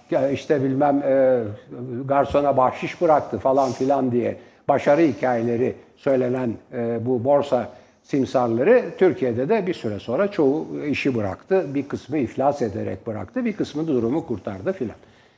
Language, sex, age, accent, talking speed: Turkish, male, 60-79, native, 135 wpm